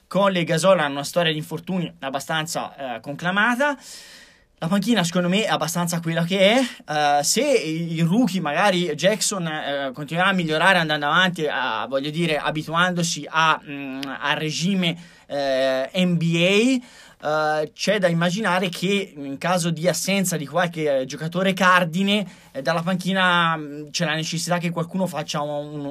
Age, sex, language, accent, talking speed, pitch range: 20-39, male, Italian, native, 145 wpm, 165-205 Hz